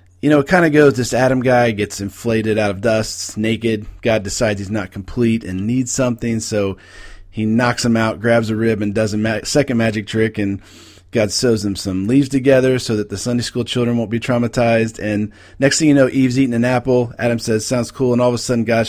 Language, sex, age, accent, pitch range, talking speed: English, male, 40-59, American, 100-125 Hz, 230 wpm